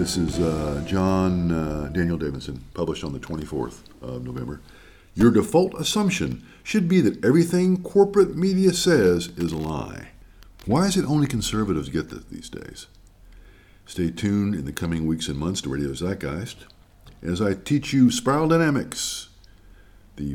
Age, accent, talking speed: 50-69, American, 155 wpm